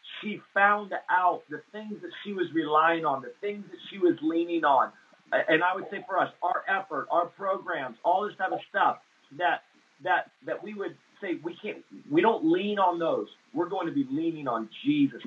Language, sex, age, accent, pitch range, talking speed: English, male, 40-59, American, 160-215 Hz, 205 wpm